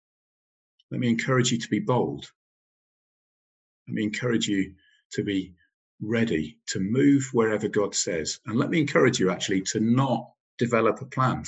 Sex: male